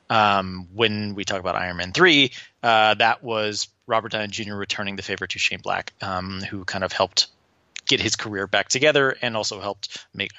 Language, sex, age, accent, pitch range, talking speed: English, male, 20-39, American, 100-130 Hz, 195 wpm